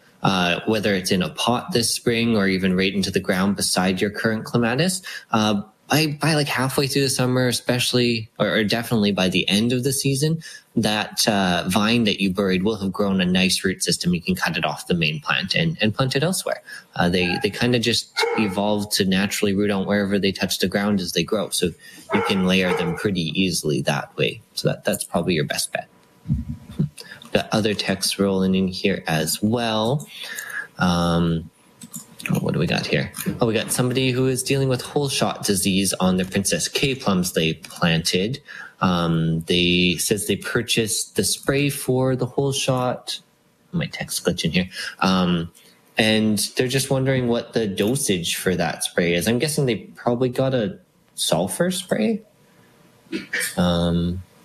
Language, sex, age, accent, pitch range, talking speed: English, male, 20-39, American, 95-130 Hz, 185 wpm